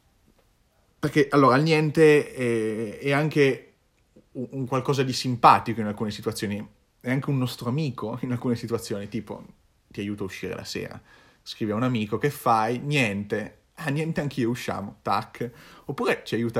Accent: native